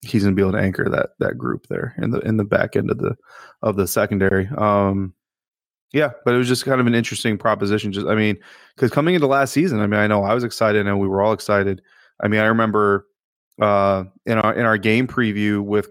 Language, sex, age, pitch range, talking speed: English, male, 20-39, 95-115 Hz, 245 wpm